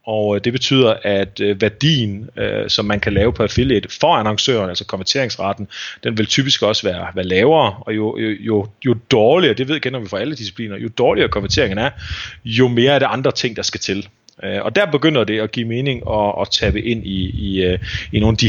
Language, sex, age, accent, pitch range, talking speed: Danish, male, 30-49, native, 105-125 Hz, 210 wpm